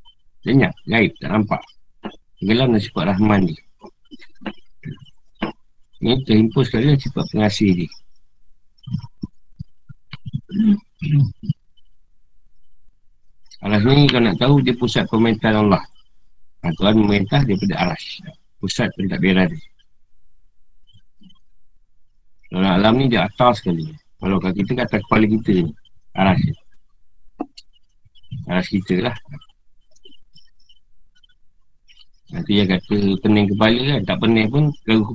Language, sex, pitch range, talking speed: Malay, male, 100-130 Hz, 105 wpm